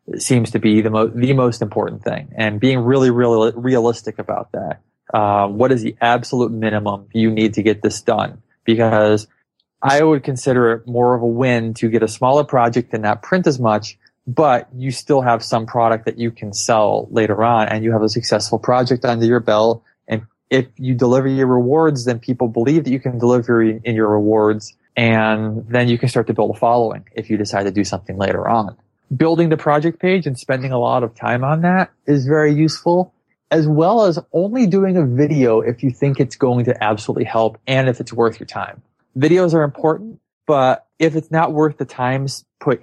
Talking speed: 210 wpm